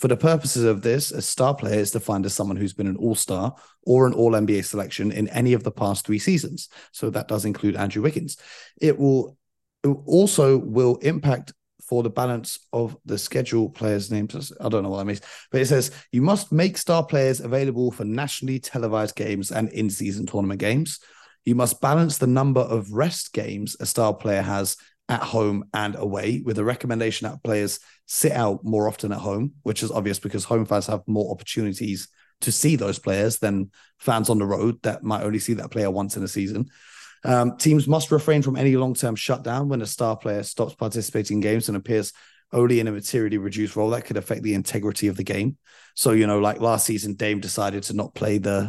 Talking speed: 205 wpm